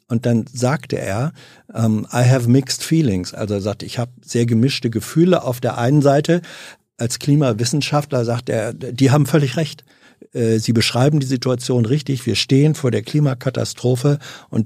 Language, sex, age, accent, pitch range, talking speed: German, male, 50-69, German, 115-140 Hz, 160 wpm